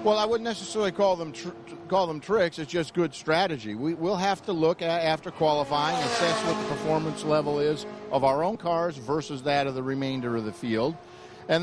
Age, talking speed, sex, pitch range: 50-69, 215 wpm, male, 145-185 Hz